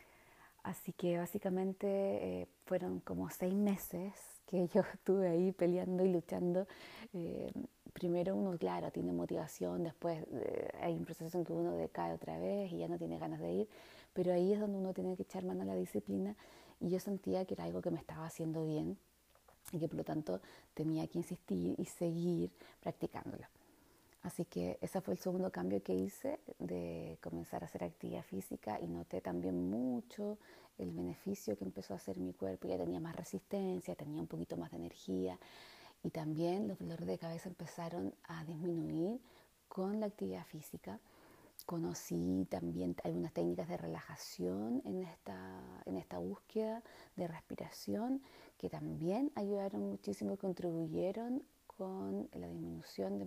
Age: 30-49